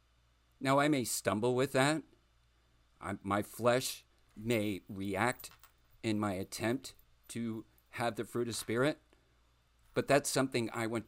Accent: American